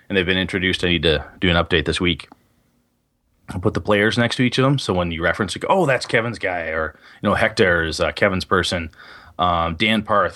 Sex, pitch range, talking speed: male, 90-115 Hz, 245 wpm